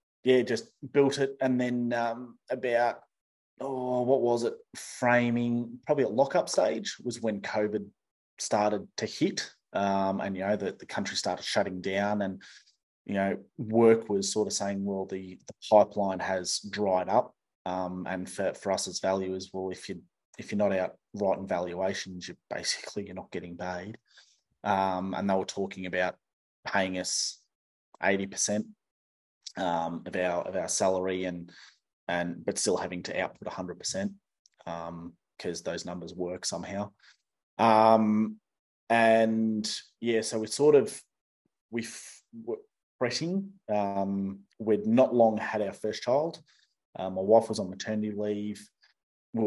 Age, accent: 20-39, Australian